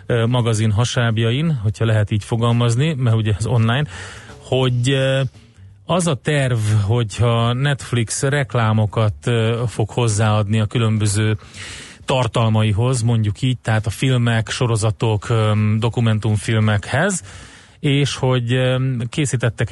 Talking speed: 95 wpm